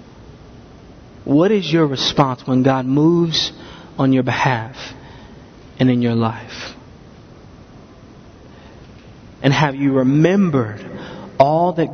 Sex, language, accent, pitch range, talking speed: male, English, American, 130-155 Hz, 100 wpm